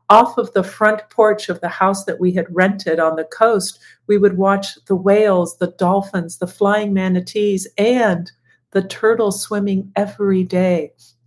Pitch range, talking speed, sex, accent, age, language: 175-215 Hz, 165 wpm, female, American, 50-69, English